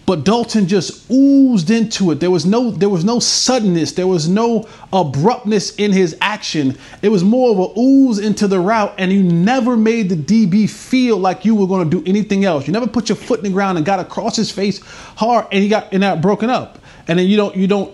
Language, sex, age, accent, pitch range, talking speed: English, male, 30-49, American, 170-220 Hz, 240 wpm